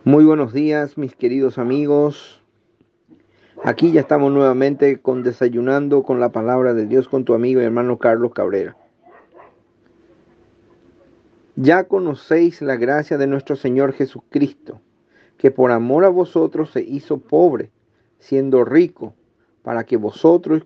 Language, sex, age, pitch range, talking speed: Spanish, male, 40-59, 135-185 Hz, 130 wpm